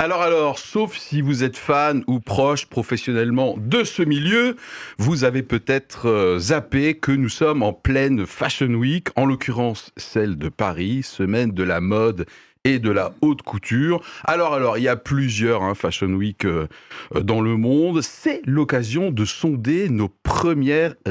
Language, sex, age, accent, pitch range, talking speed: French, male, 40-59, French, 105-145 Hz, 160 wpm